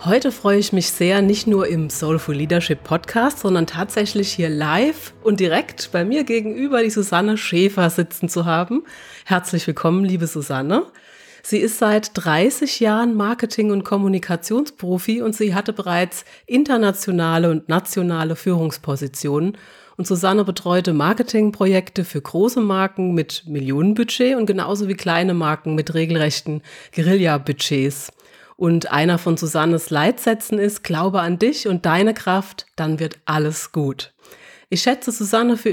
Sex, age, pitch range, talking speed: female, 30-49, 165-220 Hz, 140 wpm